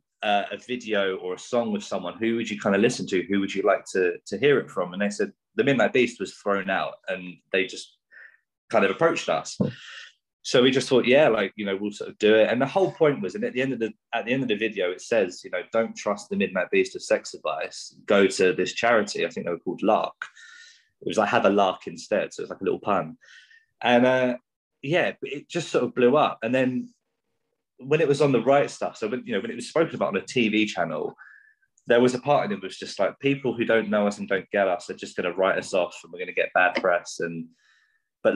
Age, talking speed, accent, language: 20-39, 265 wpm, British, English